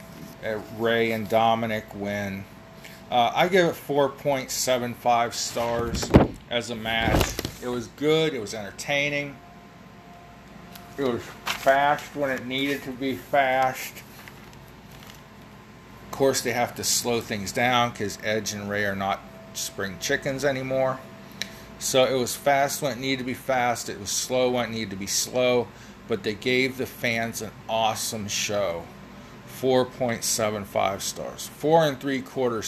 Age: 40-59